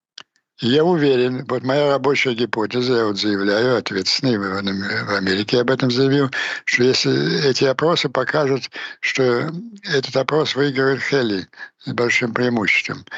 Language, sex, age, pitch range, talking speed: Ukrainian, male, 60-79, 120-145 Hz, 125 wpm